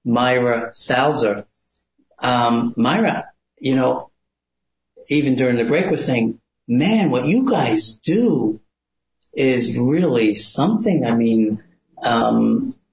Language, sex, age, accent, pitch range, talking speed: English, male, 50-69, American, 110-140 Hz, 105 wpm